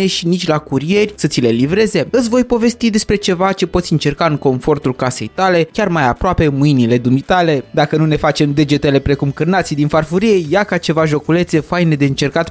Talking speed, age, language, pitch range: 195 wpm, 20-39, Romanian, 140-185 Hz